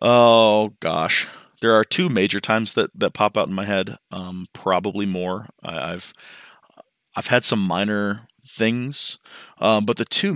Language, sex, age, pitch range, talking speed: English, male, 20-39, 95-120 Hz, 170 wpm